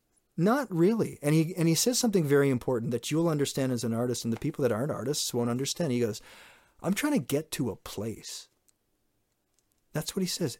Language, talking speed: English, 215 wpm